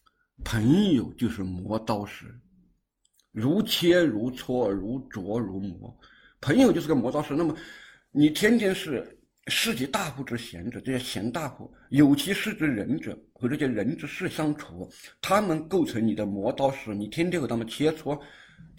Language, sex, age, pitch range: Chinese, male, 50-69, 110-170 Hz